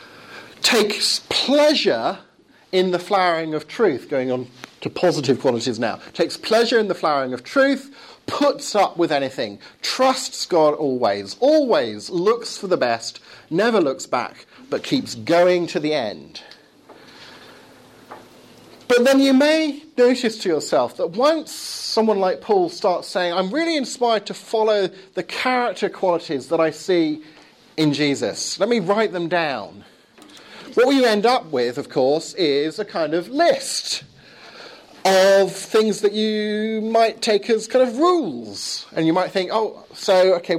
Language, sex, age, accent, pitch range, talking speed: English, male, 40-59, British, 155-230 Hz, 150 wpm